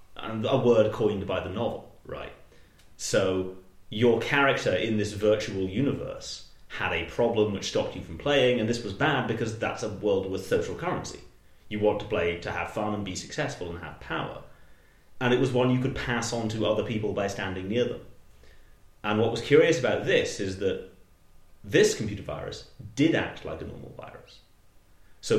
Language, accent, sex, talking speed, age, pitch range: English, British, male, 190 wpm, 30-49, 90-115 Hz